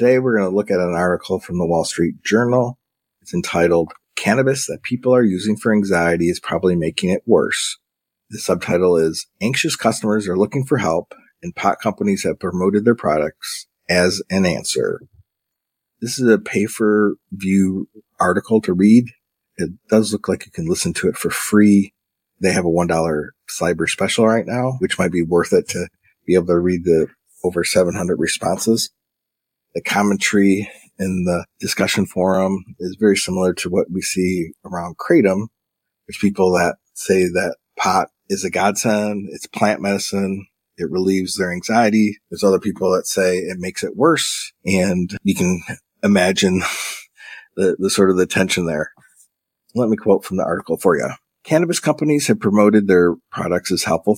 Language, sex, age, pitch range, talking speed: English, male, 40-59, 90-110 Hz, 170 wpm